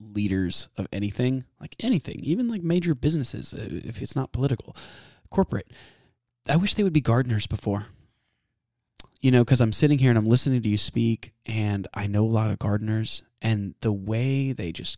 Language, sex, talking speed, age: English, male, 180 wpm, 20-39